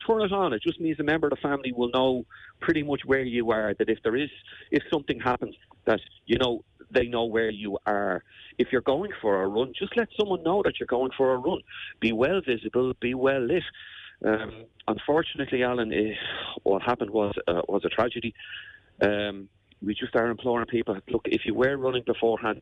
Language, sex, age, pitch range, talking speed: English, male, 40-59, 110-145 Hz, 205 wpm